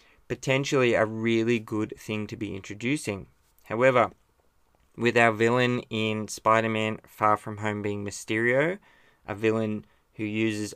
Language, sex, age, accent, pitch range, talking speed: English, male, 20-39, Australian, 105-120 Hz, 130 wpm